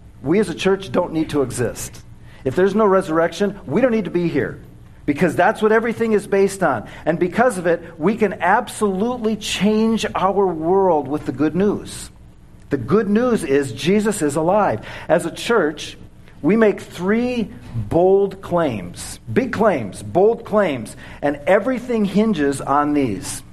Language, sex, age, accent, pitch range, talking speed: English, male, 50-69, American, 140-205 Hz, 160 wpm